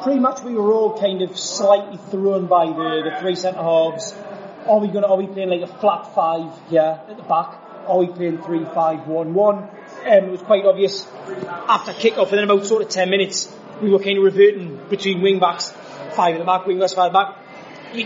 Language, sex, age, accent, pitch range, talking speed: English, male, 20-39, British, 185-220 Hz, 225 wpm